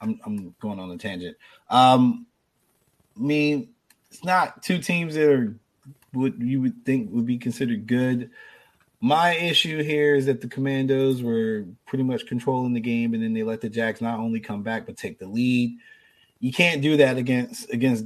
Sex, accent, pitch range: male, American, 115-145 Hz